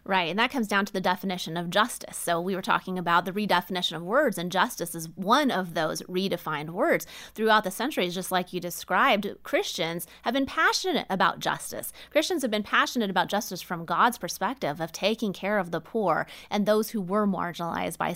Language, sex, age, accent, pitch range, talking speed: English, female, 30-49, American, 180-220 Hz, 200 wpm